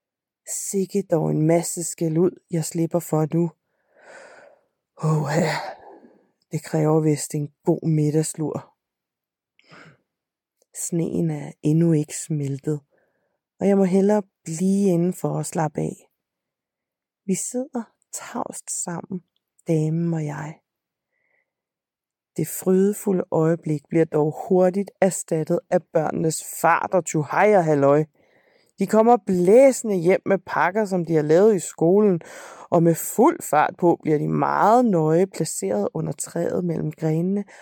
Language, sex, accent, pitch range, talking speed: Danish, female, native, 155-195 Hz, 125 wpm